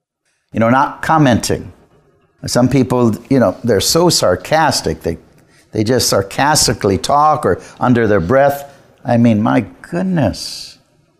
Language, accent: English, American